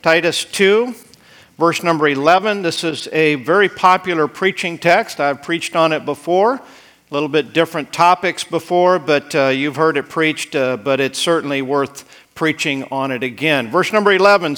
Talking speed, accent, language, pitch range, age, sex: 170 wpm, American, English, 155-200 Hz, 50-69, male